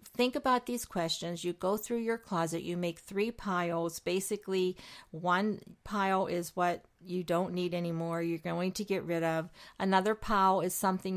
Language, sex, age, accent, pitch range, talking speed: English, female, 50-69, American, 175-205 Hz, 170 wpm